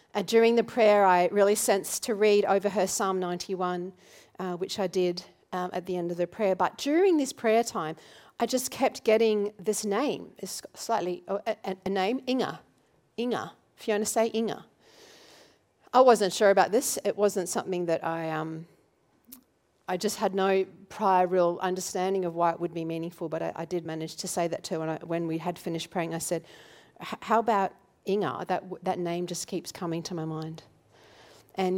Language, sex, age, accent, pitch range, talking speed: English, female, 40-59, Australian, 170-205 Hz, 195 wpm